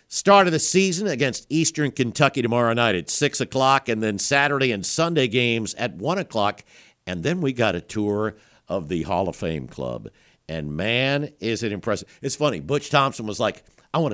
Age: 50-69